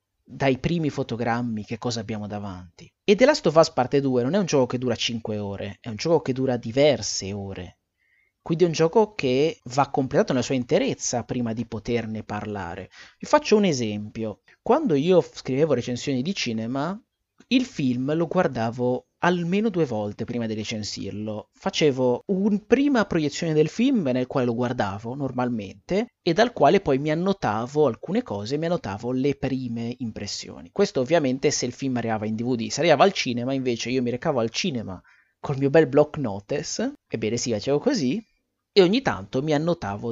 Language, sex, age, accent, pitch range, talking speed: Italian, male, 30-49, native, 115-160 Hz, 180 wpm